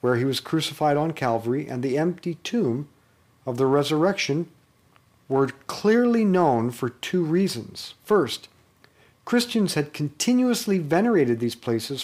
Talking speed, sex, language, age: 130 wpm, male, English, 50-69